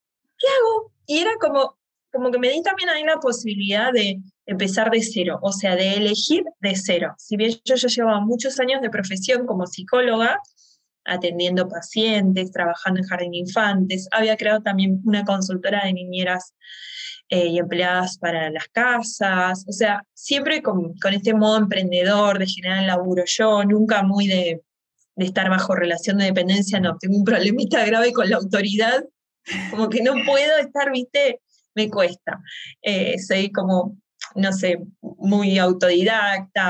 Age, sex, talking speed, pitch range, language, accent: 20-39, female, 160 wpm, 190-250 Hz, Spanish, Argentinian